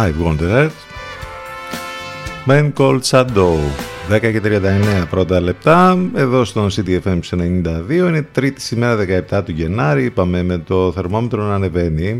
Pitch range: 80-110 Hz